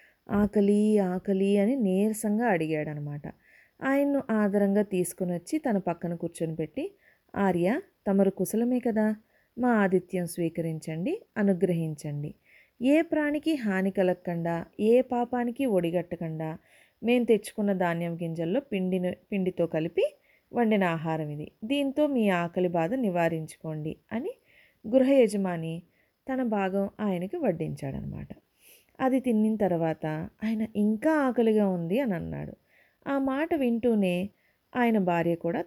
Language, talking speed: Telugu, 110 wpm